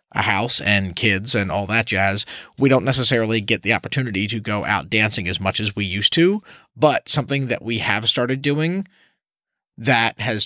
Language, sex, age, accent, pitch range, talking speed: English, male, 30-49, American, 105-135 Hz, 190 wpm